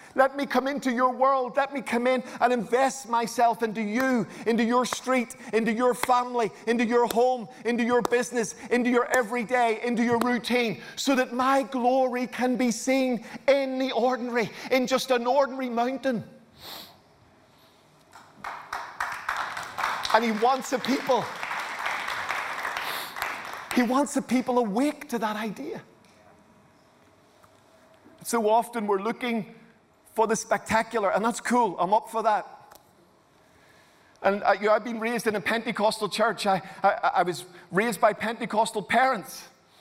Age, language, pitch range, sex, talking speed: 40-59, English, 225-255 Hz, male, 140 wpm